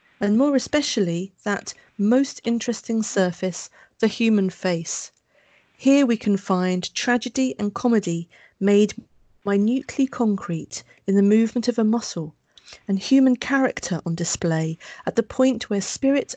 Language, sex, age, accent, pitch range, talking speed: English, female, 40-59, British, 185-235 Hz, 130 wpm